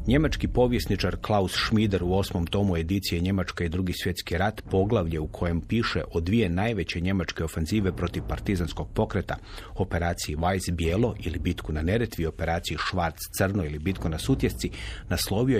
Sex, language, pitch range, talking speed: male, Croatian, 90-110 Hz, 155 wpm